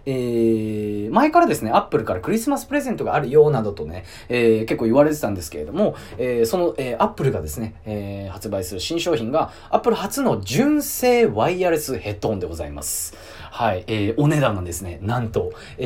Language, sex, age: Japanese, male, 30-49